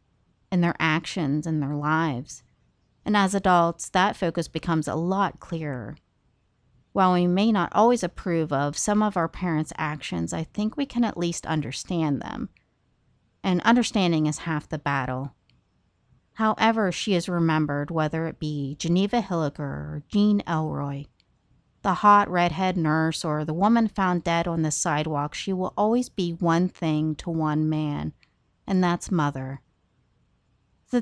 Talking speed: 150 wpm